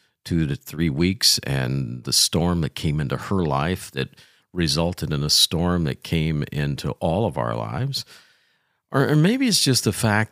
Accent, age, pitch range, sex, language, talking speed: American, 50-69, 80-115 Hz, male, English, 180 wpm